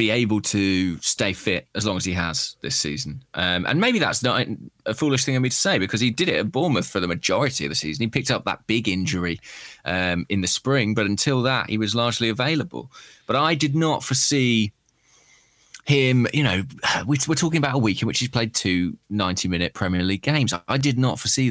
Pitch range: 95-135 Hz